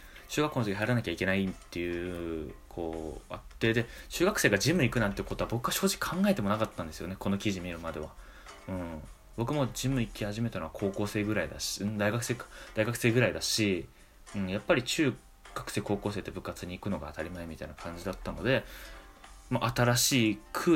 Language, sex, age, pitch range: Japanese, male, 20-39, 95-120 Hz